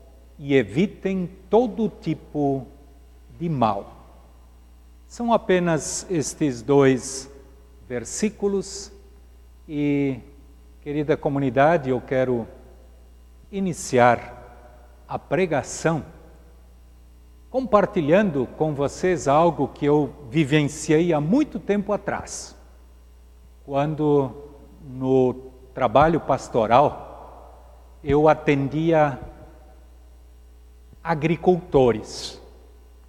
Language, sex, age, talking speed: Portuguese, male, 60-79, 65 wpm